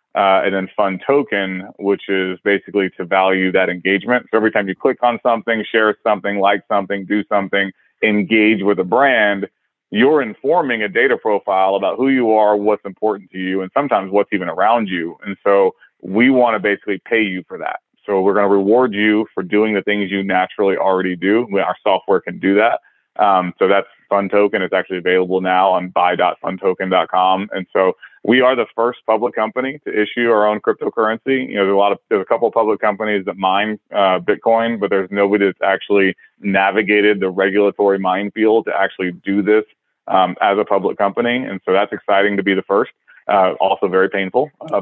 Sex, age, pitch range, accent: male, 30-49, 95-110 Hz, American